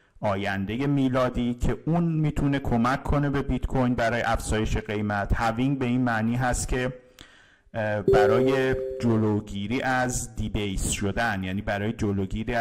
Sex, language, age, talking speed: male, Persian, 50-69, 135 wpm